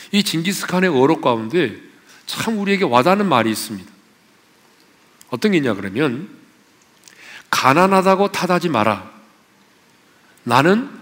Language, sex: Korean, male